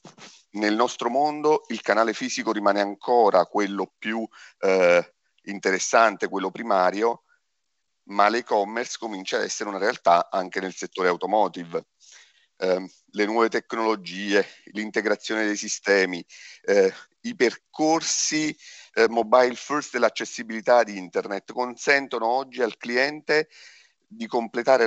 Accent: native